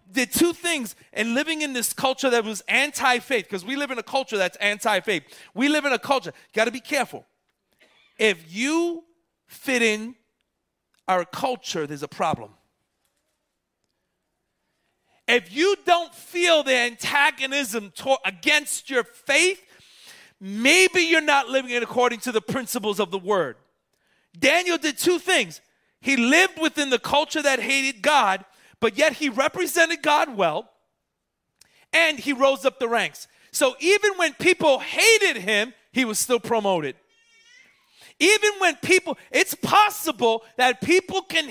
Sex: male